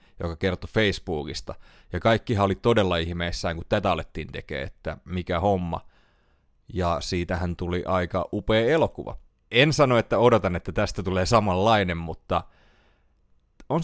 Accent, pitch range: native, 90-120 Hz